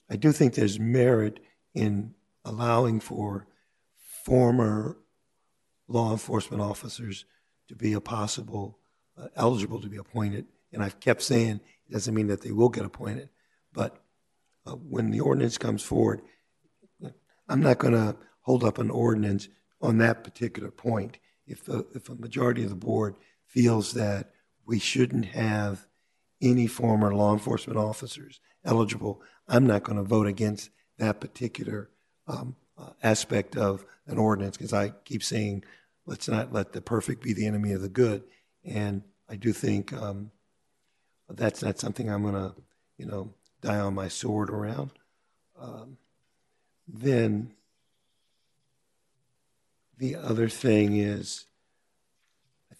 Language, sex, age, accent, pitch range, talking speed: English, male, 50-69, American, 105-120 Hz, 140 wpm